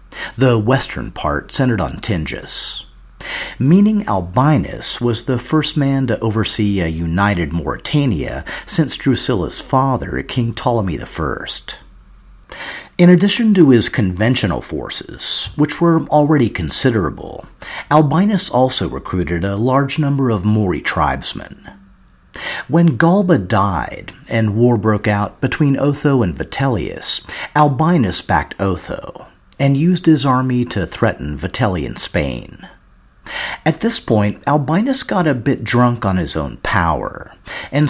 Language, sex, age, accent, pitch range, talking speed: English, male, 50-69, American, 90-150 Hz, 120 wpm